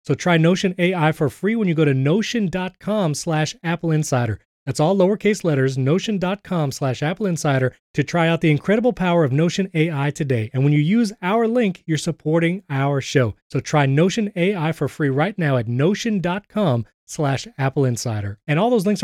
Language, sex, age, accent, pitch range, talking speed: English, male, 30-49, American, 140-180 Hz, 185 wpm